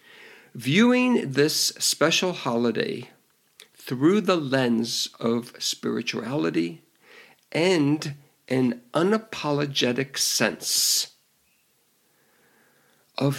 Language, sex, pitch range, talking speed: English, male, 125-170 Hz, 65 wpm